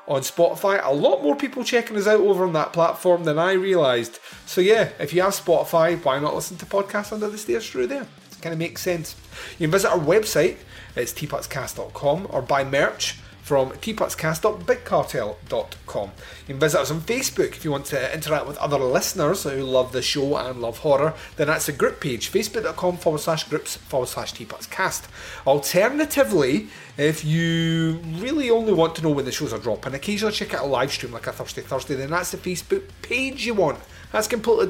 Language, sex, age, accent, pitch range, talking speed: English, male, 30-49, British, 140-200 Hz, 195 wpm